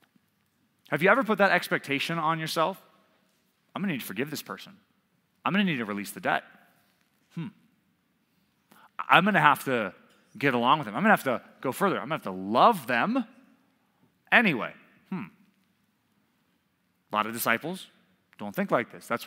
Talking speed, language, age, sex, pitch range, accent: 185 wpm, English, 30-49, male, 140-200 Hz, American